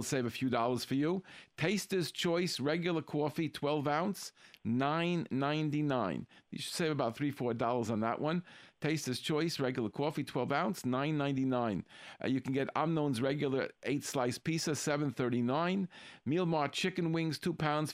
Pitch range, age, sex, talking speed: 130-165 Hz, 50-69, male, 155 wpm